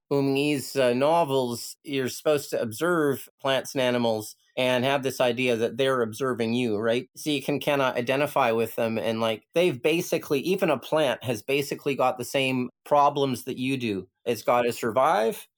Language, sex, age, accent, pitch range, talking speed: English, male, 30-49, American, 115-140 Hz, 185 wpm